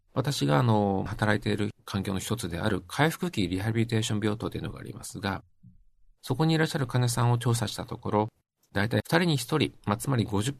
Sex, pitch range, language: male, 95-130 Hz, Japanese